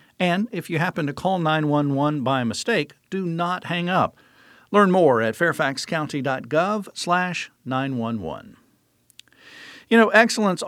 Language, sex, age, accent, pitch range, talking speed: English, male, 50-69, American, 135-180 Hz, 110 wpm